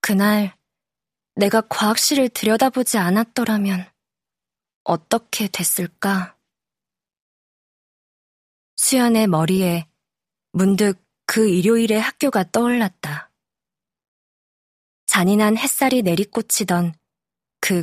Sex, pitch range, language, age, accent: female, 185-235 Hz, Korean, 20-39, native